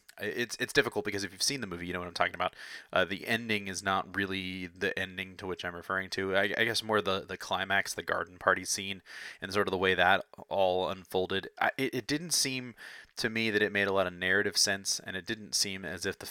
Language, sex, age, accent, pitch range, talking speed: English, male, 30-49, American, 90-105 Hz, 255 wpm